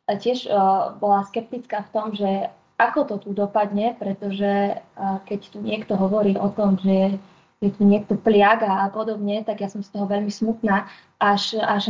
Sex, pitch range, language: female, 200-230 Hz, Slovak